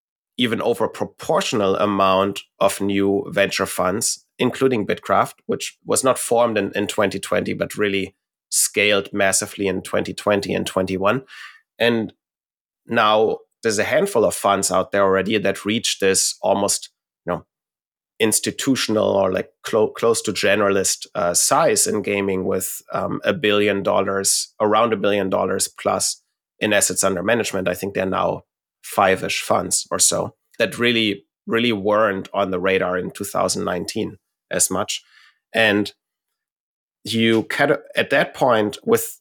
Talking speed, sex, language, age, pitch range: 145 wpm, male, English, 30-49, 100-115 Hz